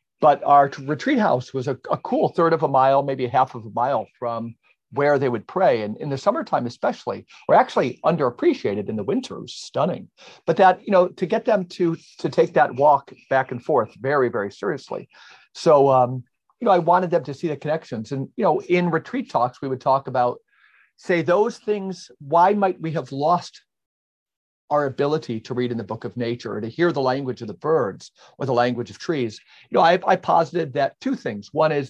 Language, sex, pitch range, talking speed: English, male, 125-170 Hz, 220 wpm